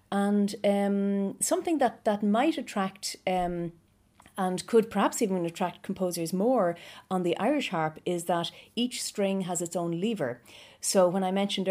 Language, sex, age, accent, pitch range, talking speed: English, female, 40-59, Irish, 170-200 Hz, 160 wpm